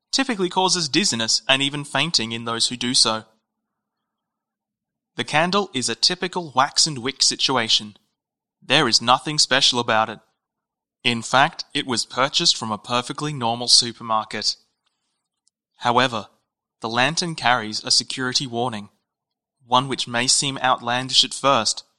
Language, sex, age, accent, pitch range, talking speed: English, male, 20-39, Australian, 110-135 Hz, 135 wpm